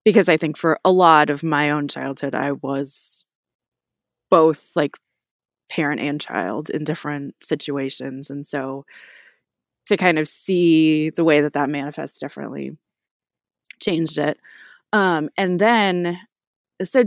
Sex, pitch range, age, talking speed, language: female, 145-175 Hz, 20-39, 135 wpm, English